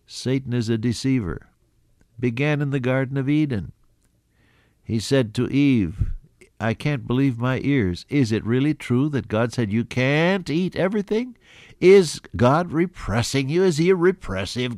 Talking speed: 155 wpm